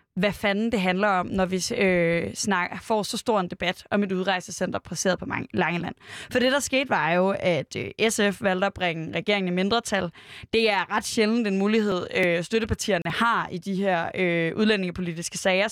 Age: 20-39